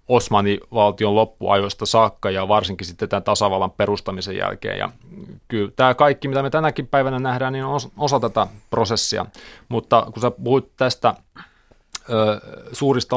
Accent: native